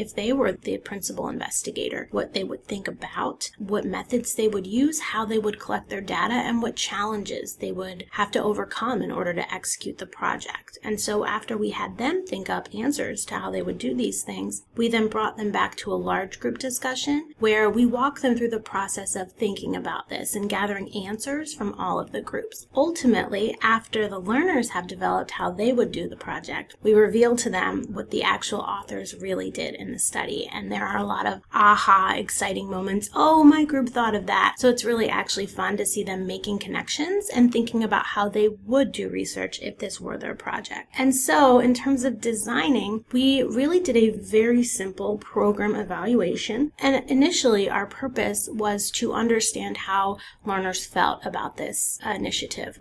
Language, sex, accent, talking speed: English, female, American, 195 wpm